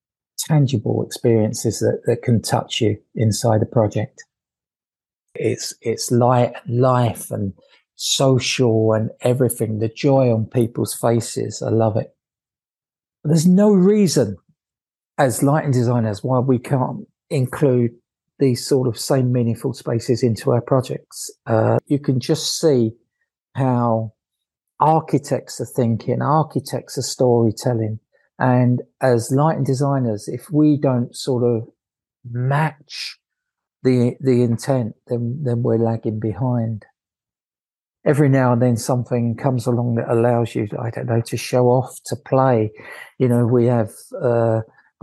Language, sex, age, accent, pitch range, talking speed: English, male, 50-69, British, 115-130 Hz, 130 wpm